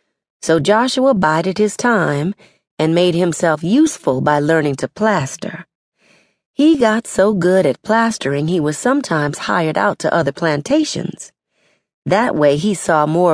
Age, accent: 40-59, American